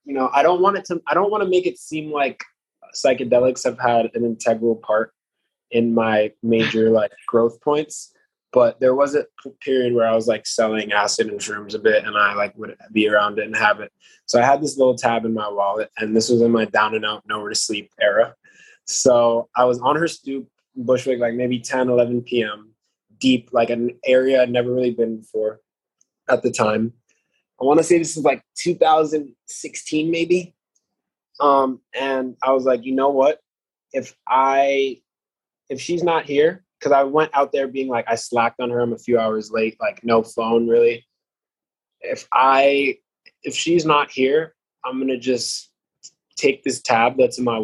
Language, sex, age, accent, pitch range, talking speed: English, male, 20-39, American, 115-140 Hz, 195 wpm